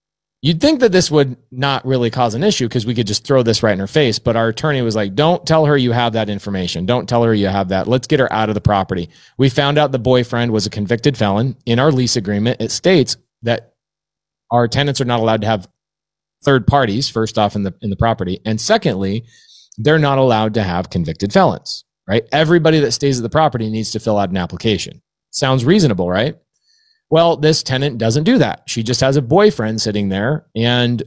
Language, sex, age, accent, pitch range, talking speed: English, male, 30-49, American, 110-150 Hz, 225 wpm